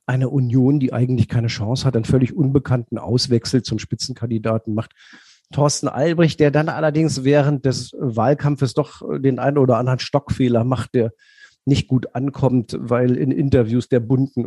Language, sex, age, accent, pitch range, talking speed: German, male, 50-69, German, 125-150 Hz, 160 wpm